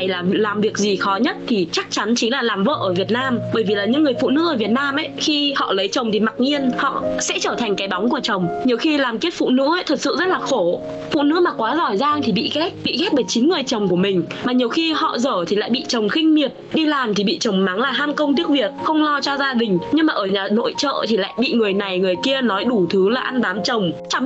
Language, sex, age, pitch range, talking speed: Vietnamese, female, 20-39, 205-285 Hz, 295 wpm